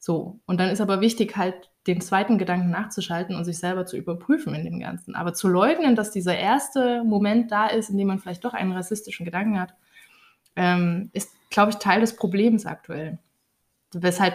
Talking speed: 190 wpm